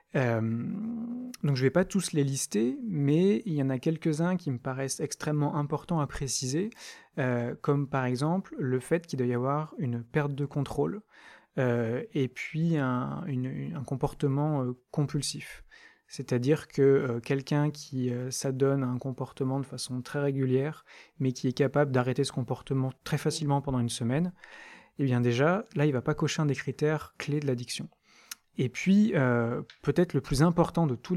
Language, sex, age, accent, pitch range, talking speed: French, male, 30-49, French, 130-155 Hz, 180 wpm